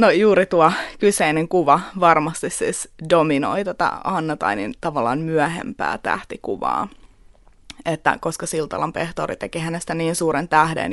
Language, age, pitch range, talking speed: Finnish, 20-39, 150-190 Hz, 120 wpm